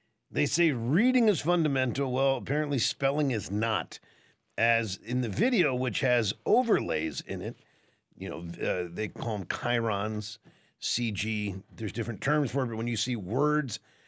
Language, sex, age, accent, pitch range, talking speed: English, male, 50-69, American, 115-170 Hz, 160 wpm